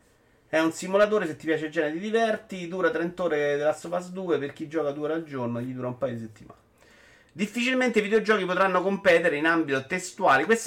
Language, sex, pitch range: Italian, male, 135-185 Hz